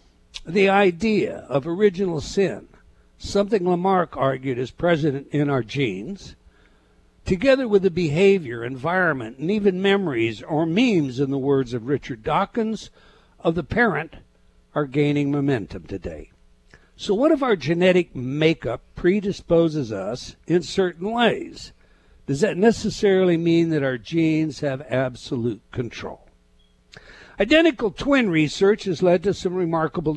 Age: 60-79